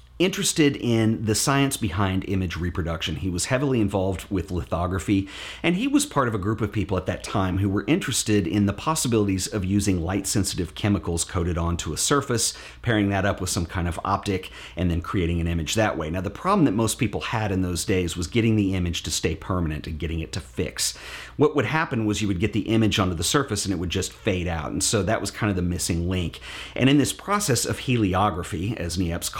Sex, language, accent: male, English, American